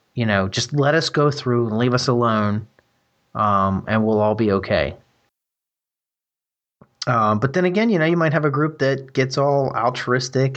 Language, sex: English, male